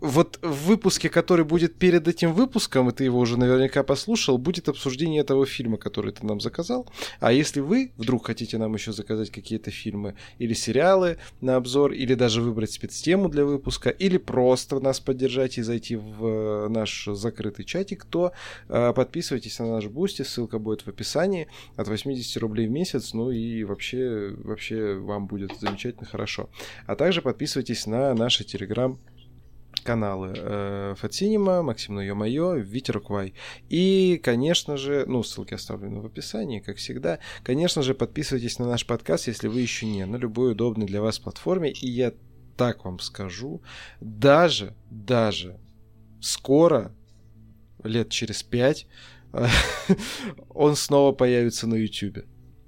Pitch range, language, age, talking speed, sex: 110-140 Hz, Russian, 20-39, 145 wpm, male